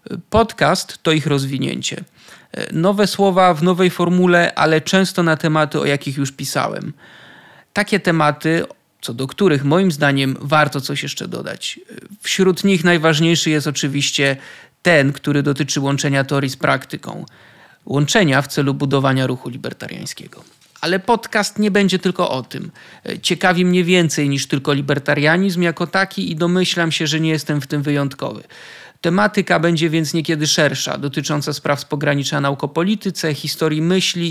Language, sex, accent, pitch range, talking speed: Polish, male, native, 145-180 Hz, 145 wpm